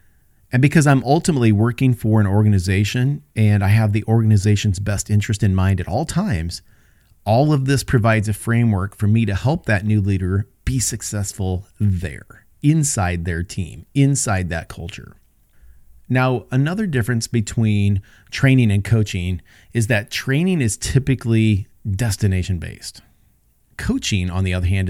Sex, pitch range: male, 100-125 Hz